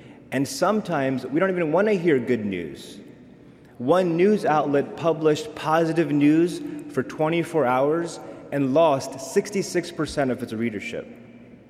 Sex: male